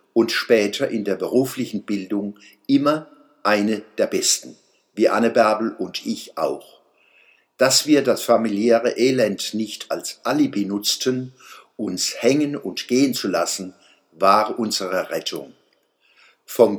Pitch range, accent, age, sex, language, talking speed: 105-130 Hz, German, 60-79, male, German, 125 wpm